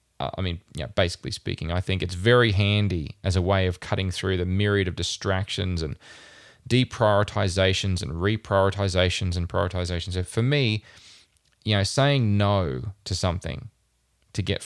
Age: 20-39